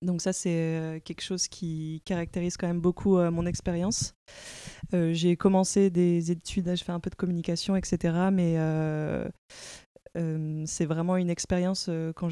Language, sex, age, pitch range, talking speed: French, female, 20-39, 165-180 Hz, 160 wpm